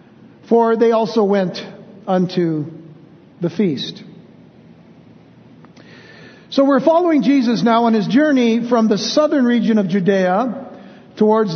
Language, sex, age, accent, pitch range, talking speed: English, male, 60-79, American, 205-250 Hz, 115 wpm